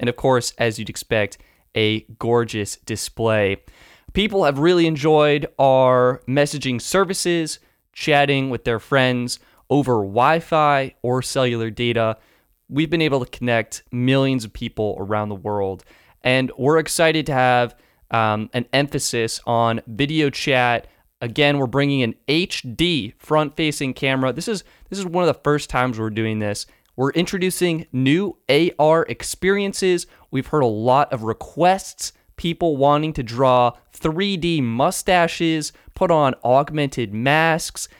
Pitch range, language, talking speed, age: 120-155 Hz, English, 135 wpm, 20-39